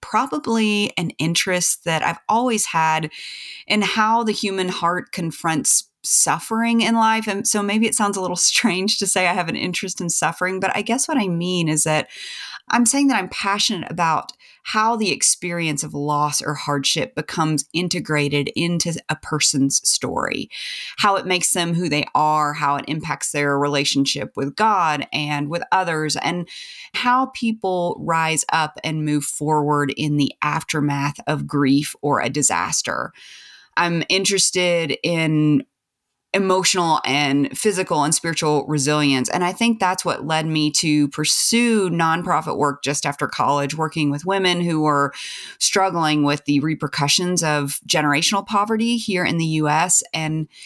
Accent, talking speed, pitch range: American, 155 wpm, 150-195 Hz